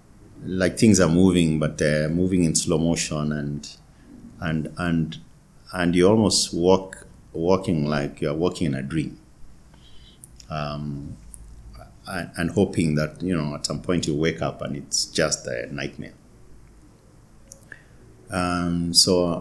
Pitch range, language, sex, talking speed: 75-90 Hz, English, male, 135 wpm